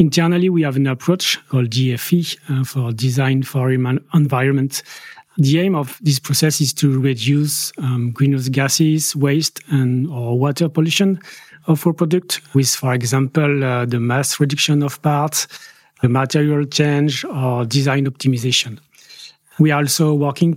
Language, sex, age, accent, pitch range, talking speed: English, male, 40-59, French, 130-155 Hz, 150 wpm